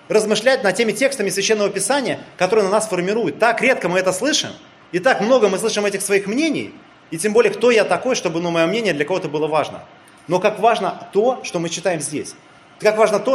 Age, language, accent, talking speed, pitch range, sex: 30-49, Russian, native, 215 wpm, 160-215 Hz, male